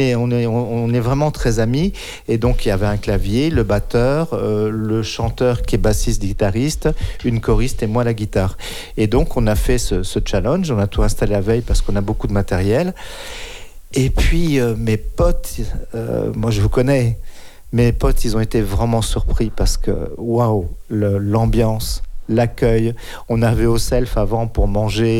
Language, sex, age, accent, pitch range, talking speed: French, male, 50-69, French, 105-125 Hz, 185 wpm